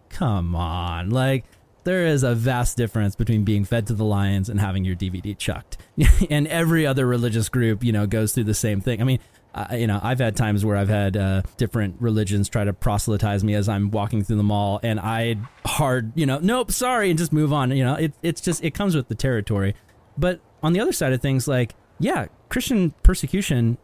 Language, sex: English, male